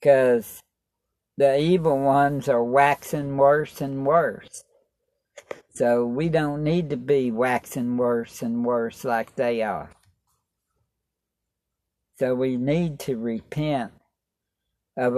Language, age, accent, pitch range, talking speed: English, 60-79, American, 120-155 Hz, 110 wpm